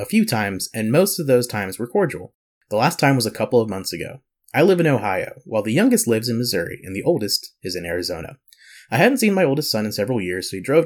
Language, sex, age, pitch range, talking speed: English, male, 30-49, 110-150 Hz, 260 wpm